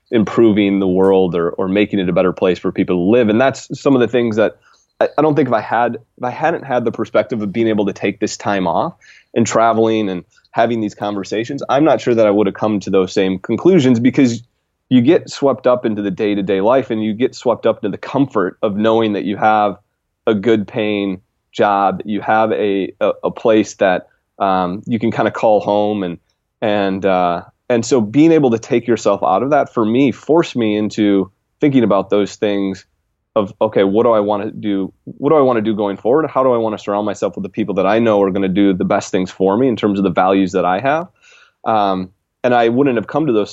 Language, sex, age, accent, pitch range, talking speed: English, male, 30-49, American, 100-120 Hz, 245 wpm